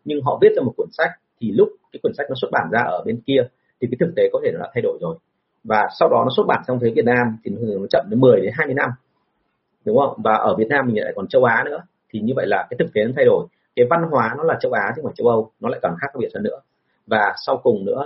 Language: Vietnamese